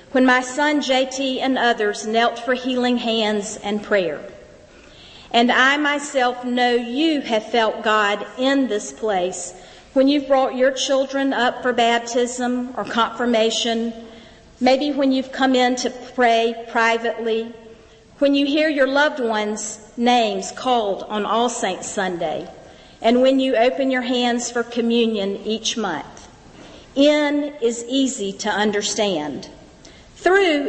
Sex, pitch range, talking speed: female, 220-260 Hz, 135 wpm